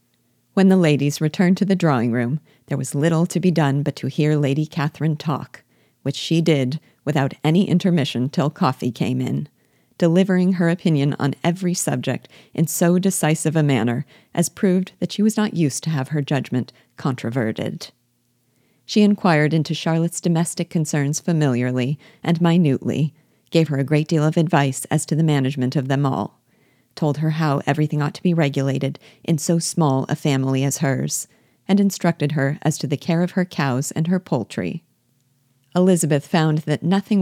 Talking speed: 170 wpm